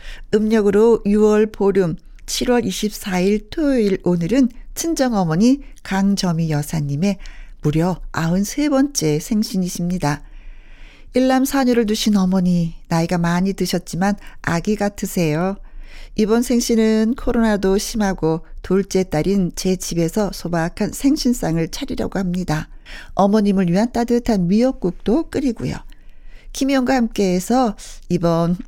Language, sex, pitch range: Korean, female, 175-230 Hz